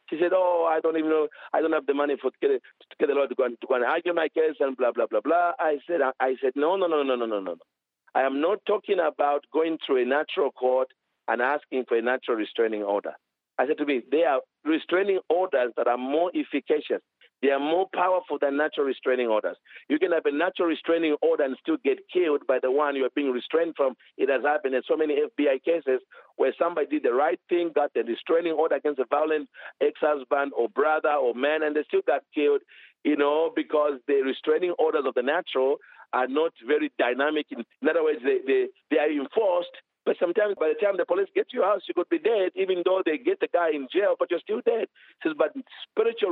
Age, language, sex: 50-69, English, male